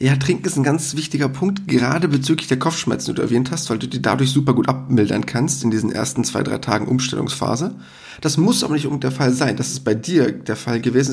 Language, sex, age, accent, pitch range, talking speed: German, male, 40-59, German, 125-160 Hz, 245 wpm